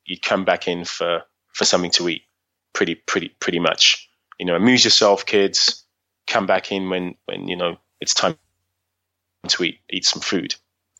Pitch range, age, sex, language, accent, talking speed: 90-105 Hz, 20-39, male, English, British, 175 wpm